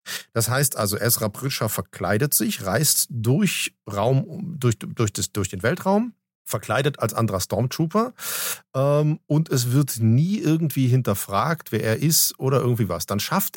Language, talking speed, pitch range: German, 155 wpm, 110-155 Hz